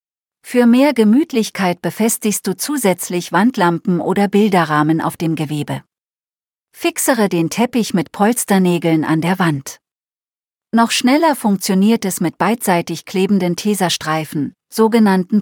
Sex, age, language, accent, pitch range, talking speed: female, 40-59, German, German, 160-220 Hz, 115 wpm